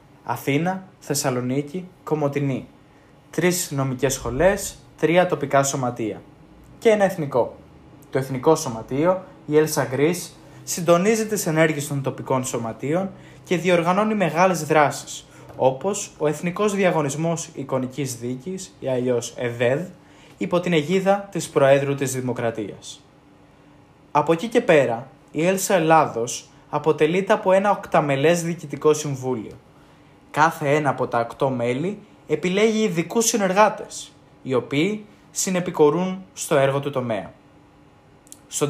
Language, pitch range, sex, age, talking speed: Greek, 135-175 Hz, male, 20-39, 120 wpm